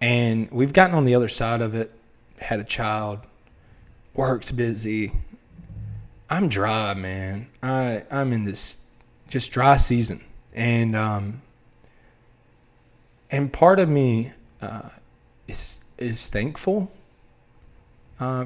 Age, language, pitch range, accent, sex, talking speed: 20-39, English, 105-130 Hz, American, male, 115 wpm